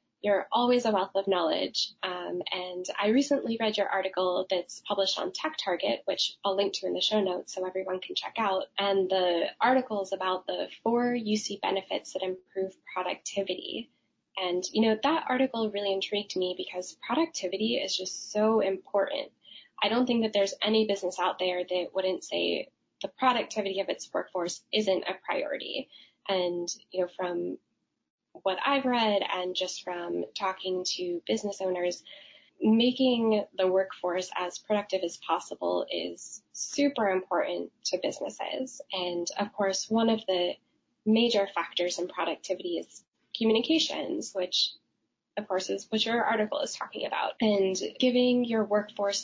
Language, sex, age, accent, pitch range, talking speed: English, female, 10-29, American, 185-225 Hz, 155 wpm